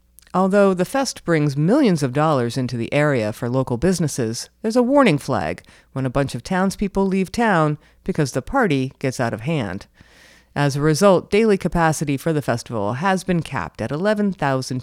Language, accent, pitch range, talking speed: English, American, 130-190 Hz, 180 wpm